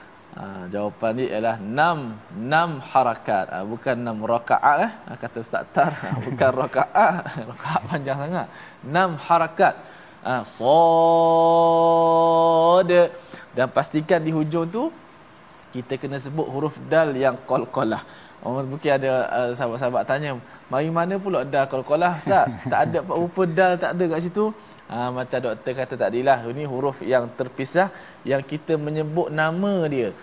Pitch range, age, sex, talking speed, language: 125-165 Hz, 20-39, male, 145 wpm, Malayalam